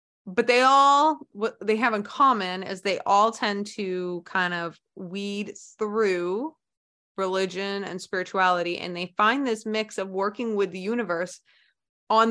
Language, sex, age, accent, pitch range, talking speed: English, female, 20-39, American, 175-215 Hz, 150 wpm